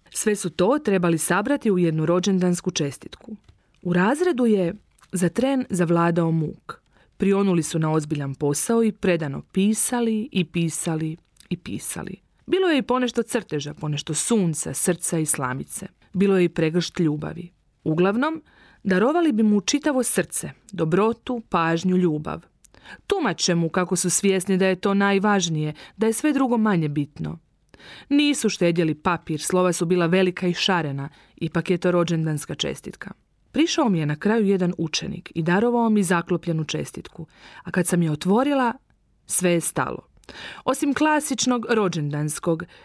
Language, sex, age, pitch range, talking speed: Croatian, female, 40-59, 165-230 Hz, 145 wpm